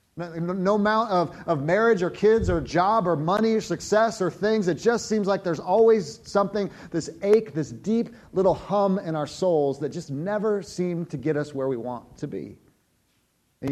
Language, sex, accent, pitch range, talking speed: English, male, American, 130-175 Hz, 190 wpm